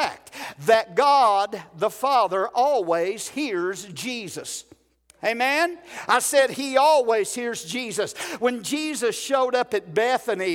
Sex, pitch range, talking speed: male, 220-265 Hz, 115 wpm